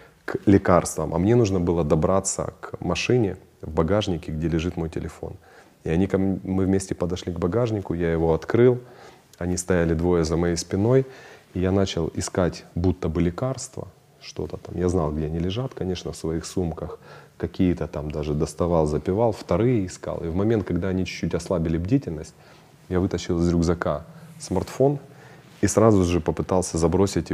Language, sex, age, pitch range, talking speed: Russian, male, 30-49, 85-100 Hz, 160 wpm